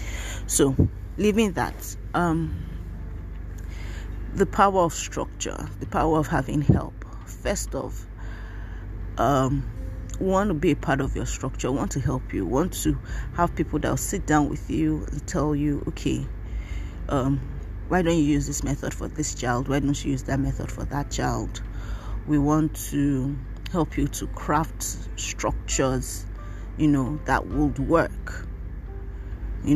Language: English